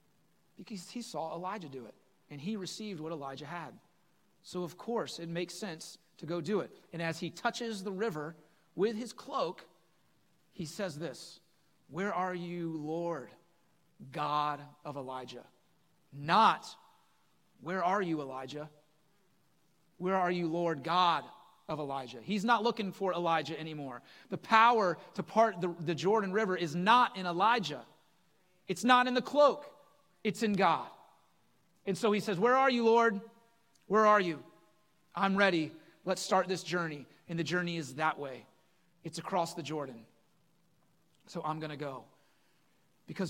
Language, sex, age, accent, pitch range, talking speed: English, male, 40-59, American, 155-190 Hz, 155 wpm